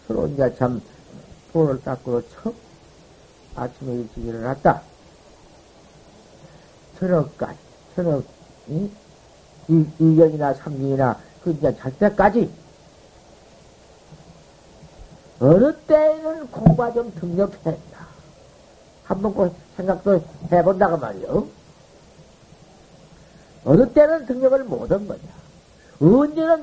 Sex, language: male, Korean